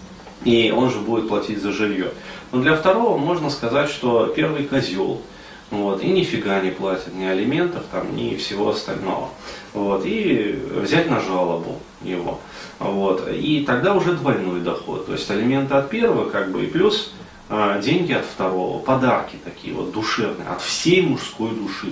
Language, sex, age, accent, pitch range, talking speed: Russian, male, 30-49, native, 95-130 Hz, 160 wpm